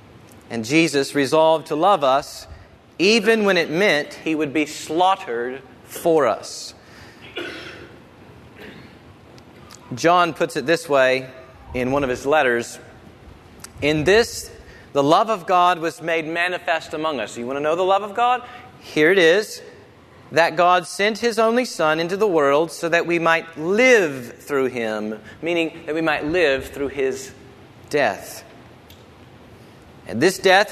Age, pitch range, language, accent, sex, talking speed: 40-59, 130-180 Hz, English, American, male, 145 wpm